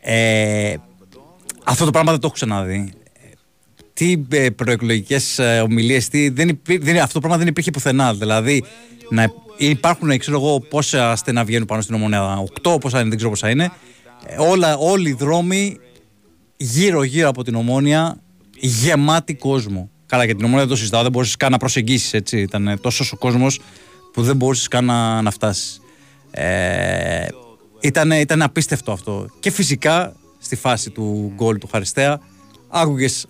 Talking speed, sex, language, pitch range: 145 wpm, male, Greek, 110-150 Hz